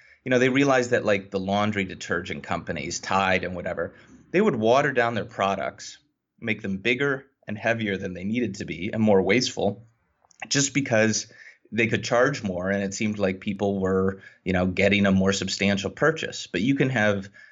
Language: English